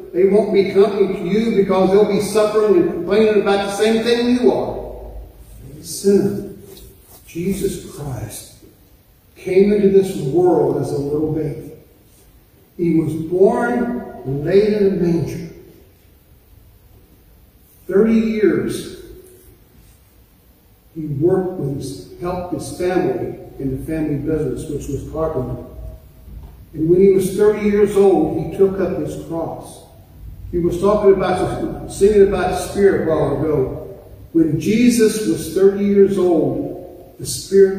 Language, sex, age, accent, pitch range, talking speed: English, male, 50-69, American, 145-195 Hz, 135 wpm